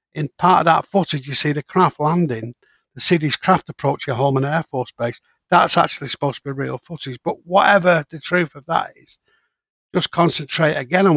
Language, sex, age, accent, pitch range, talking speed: English, male, 60-79, British, 135-170 Hz, 205 wpm